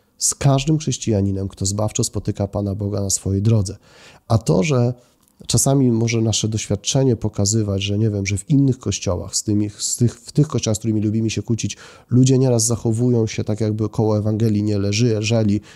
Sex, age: male, 30-49